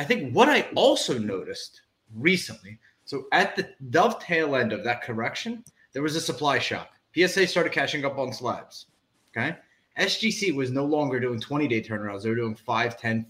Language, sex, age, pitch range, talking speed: English, male, 30-49, 125-190 Hz, 170 wpm